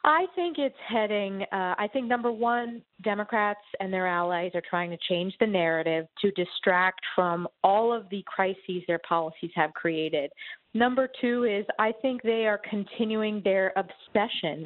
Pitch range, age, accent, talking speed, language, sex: 180-235 Hz, 40-59, American, 165 wpm, English, female